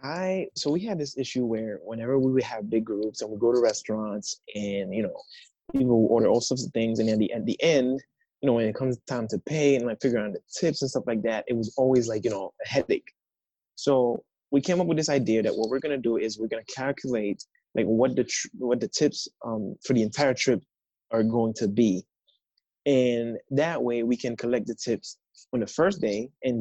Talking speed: 240 wpm